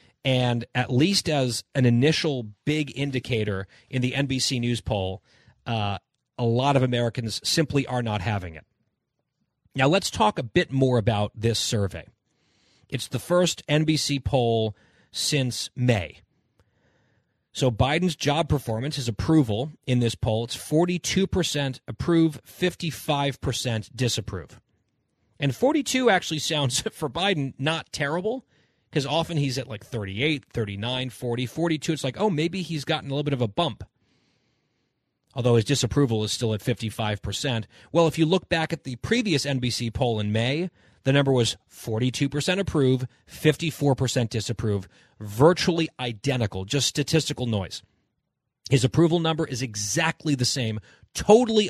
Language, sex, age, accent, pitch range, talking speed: English, male, 30-49, American, 115-155 Hz, 145 wpm